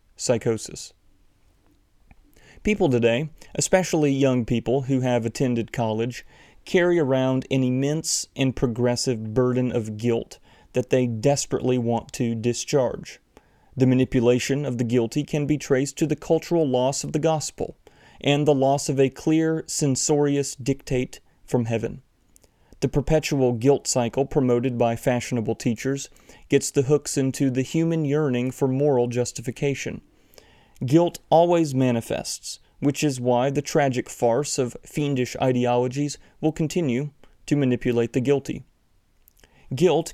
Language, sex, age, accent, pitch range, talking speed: English, male, 30-49, American, 120-145 Hz, 130 wpm